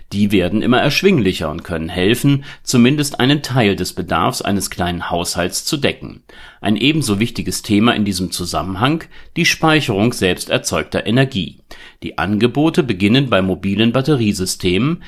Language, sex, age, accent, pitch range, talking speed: German, male, 40-59, German, 95-135 Hz, 140 wpm